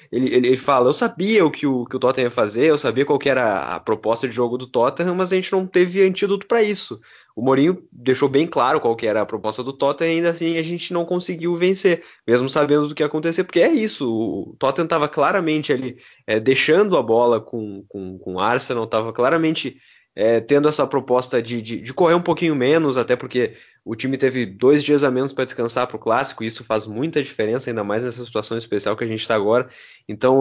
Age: 20-39